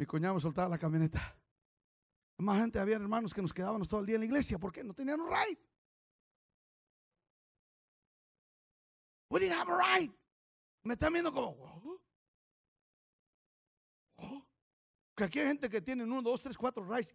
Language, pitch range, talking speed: English, 180-285 Hz, 160 wpm